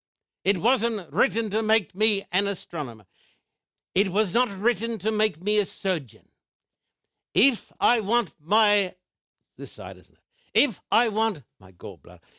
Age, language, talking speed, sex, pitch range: 60-79, English, 145 wpm, male, 185-225 Hz